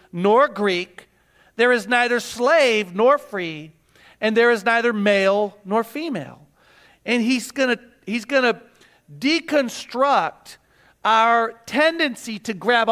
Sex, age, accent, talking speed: male, 50-69, American, 115 wpm